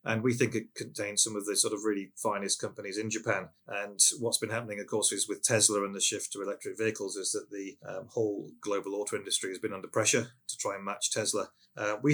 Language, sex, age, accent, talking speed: English, male, 30-49, British, 240 wpm